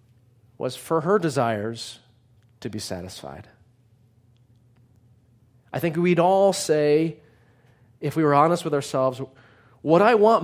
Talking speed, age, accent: 120 wpm, 30-49, American